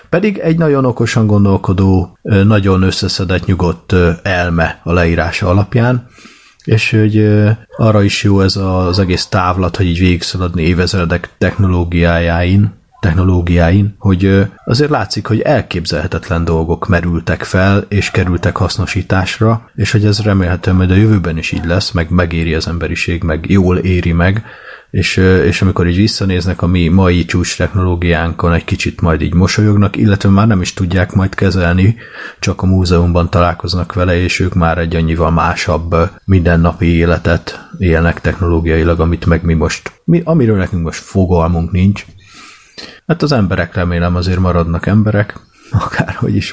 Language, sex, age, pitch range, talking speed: Hungarian, male, 30-49, 85-100 Hz, 145 wpm